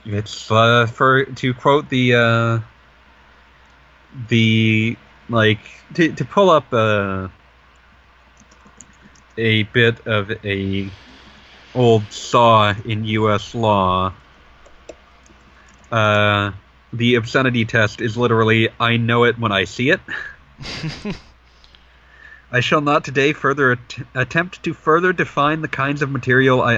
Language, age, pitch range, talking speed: English, 30-49, 100-130 Hz, 115 wpm